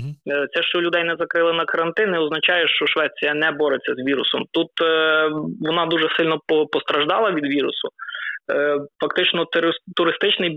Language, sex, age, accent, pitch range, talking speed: Ukrainian, male, 20-39, native, 150-180 Hz, 135 wpm